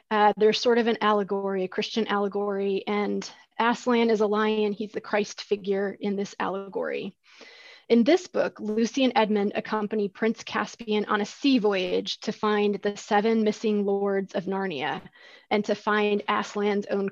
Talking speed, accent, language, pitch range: 165 wpm, American, English, 205-240 Hz